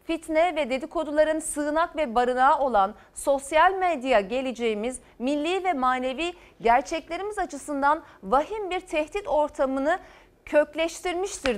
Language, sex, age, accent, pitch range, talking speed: Turkish, female, 40-59, native, 230-320 Hz, 105 wpm